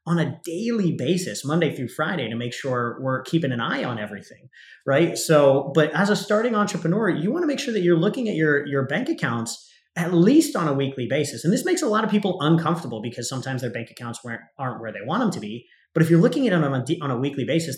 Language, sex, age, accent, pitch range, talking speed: English, male, 30-49, American, 125-185 Hz, 245 wpm